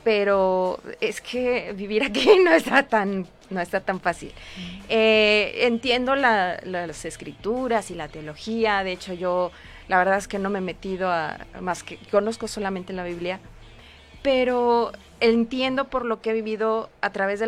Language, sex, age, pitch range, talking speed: Spanish, female, 30-49, 200-250 Hz, 150 wpm